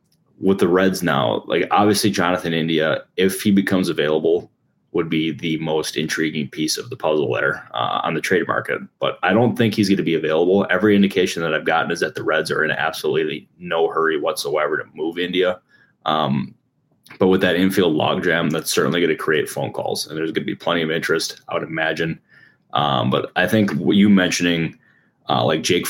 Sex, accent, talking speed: male, American, 205 wpm